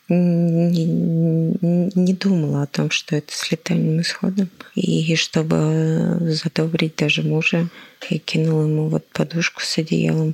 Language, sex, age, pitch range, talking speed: Russian, female, 20-39, 160-180 Hz, 135 wpm